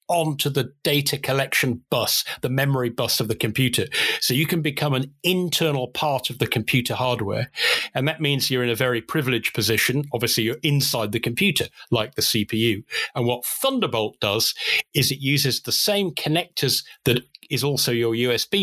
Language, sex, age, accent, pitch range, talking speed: English, male, 40-59, British, 115-145 Hz, 175 wpm